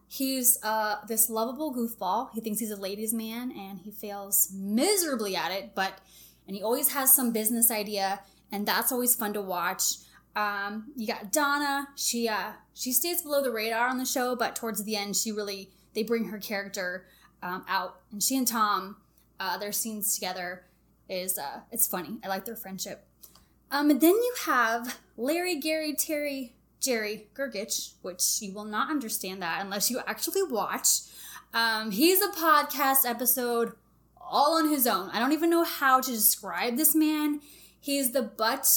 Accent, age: American, 10-29